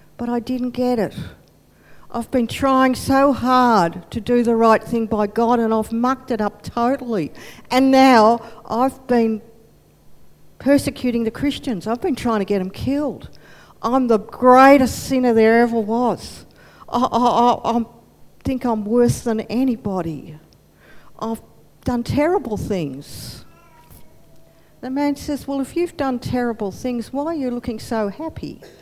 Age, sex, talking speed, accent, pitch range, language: 50-69, female, 150 wpm, Australian, 225-280 Hz, English